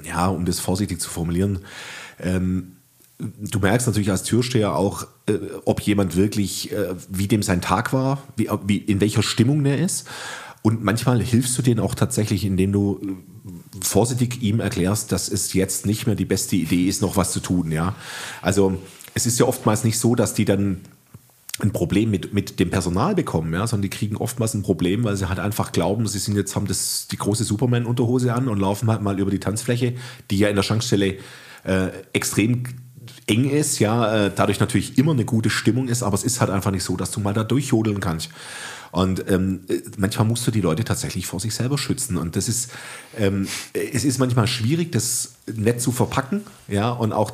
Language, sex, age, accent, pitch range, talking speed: German, male, 40-59, German, 95-120 Hz, 200 wpm